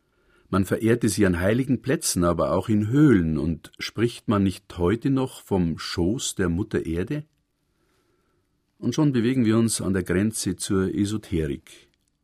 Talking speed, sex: 150 wpm, male